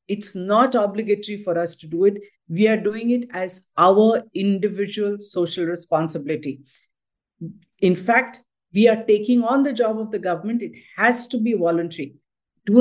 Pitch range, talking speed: 170-225 Hz, 160 wpm